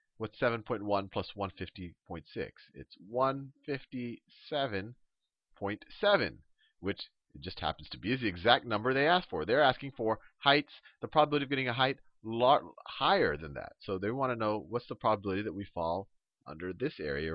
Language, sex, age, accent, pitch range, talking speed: English, male, 40-59, American, 90-135 Hz, 165 wpm